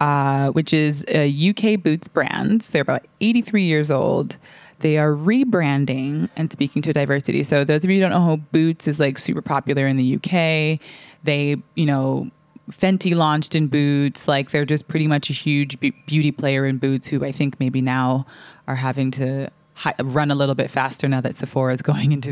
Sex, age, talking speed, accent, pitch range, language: female, 20-39, 200 wpm, American, 140-165 Hz, English